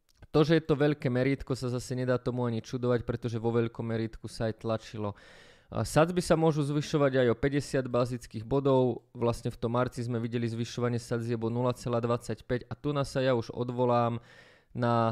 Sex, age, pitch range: male, 20-39, 120-135 Hz